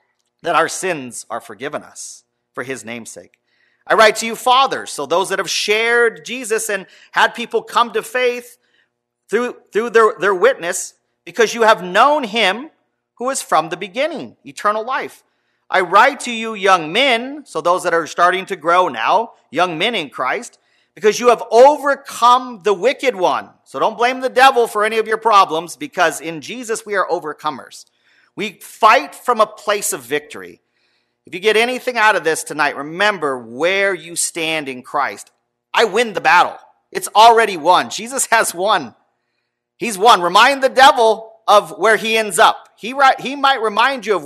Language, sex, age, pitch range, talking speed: English, male, 40-59, 170-240 Hz, 180 wpm